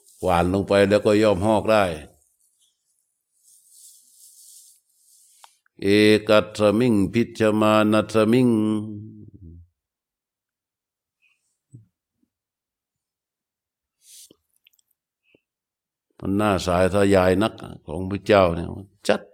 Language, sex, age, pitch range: Thai, male, 60-79, 100-110 Hz